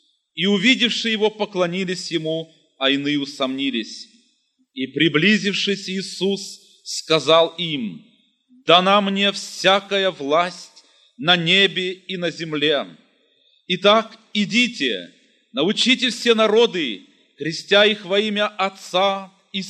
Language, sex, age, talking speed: Russian, male, 30-49, 100 wpm